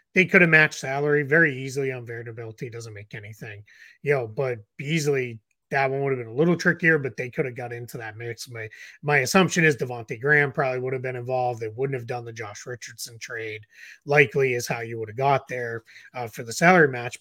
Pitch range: 120-155 Hz